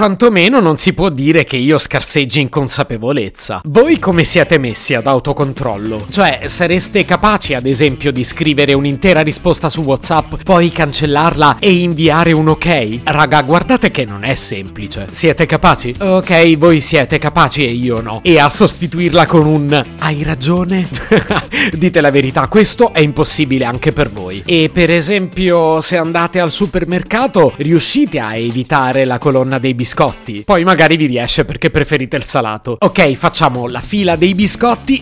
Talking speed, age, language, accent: 160 wpm, 30-49, Italian, native